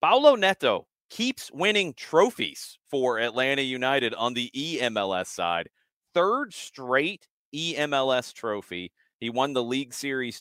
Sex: male